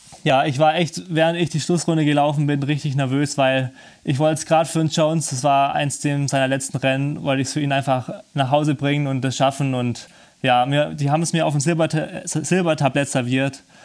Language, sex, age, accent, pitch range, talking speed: German, male, 20-39, German, 135-150 Hz, 210 wpm